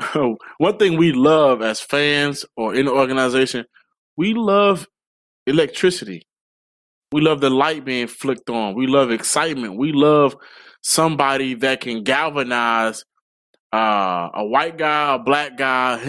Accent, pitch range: American, 135-185 Hz